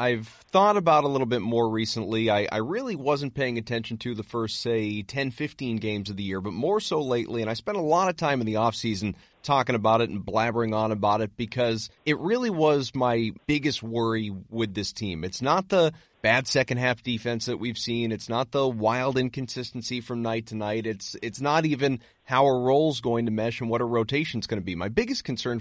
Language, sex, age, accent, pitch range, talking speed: English, male, 30-49, American, 115-145 Hz, 220 wpm